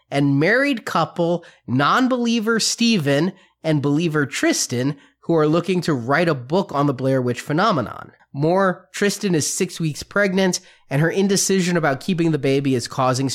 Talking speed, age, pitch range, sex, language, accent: 155 wpm, 30-49, 140-185 Hz, male, English, American